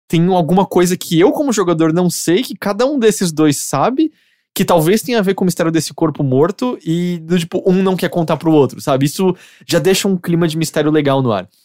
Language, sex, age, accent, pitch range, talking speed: English, male, 20-39, Brazilian, 135-185 Hz, 230 wpm